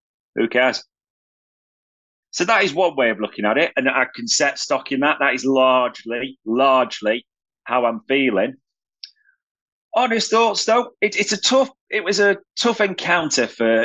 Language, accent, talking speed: English, British, 165 wpm